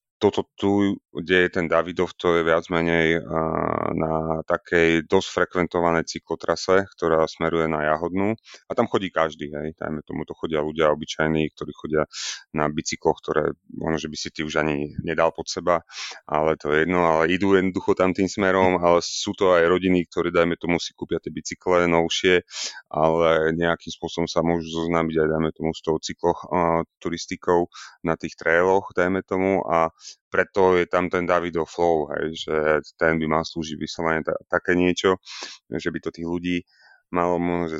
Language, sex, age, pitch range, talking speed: Slovak, male, 30-49, 80-90 Hz, 175 wpm